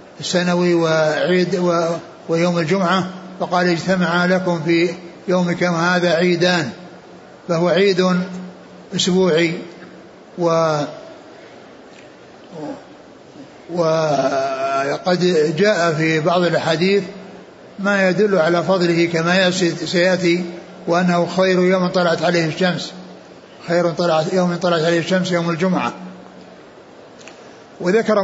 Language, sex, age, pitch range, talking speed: Arabic, male, 60-79, 170-185 Hz, 85 wpm